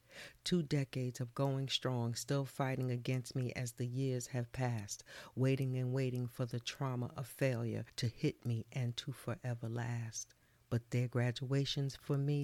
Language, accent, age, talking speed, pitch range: English, American, 40-59, 165 wpm, 120-150 Hz